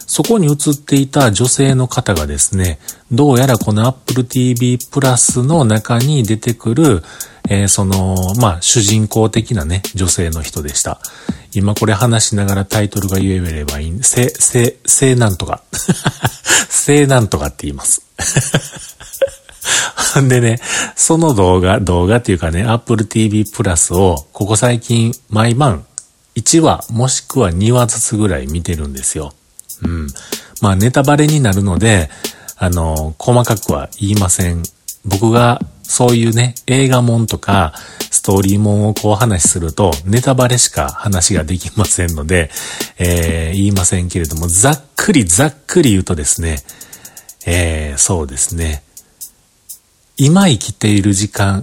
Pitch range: 90-125 Hz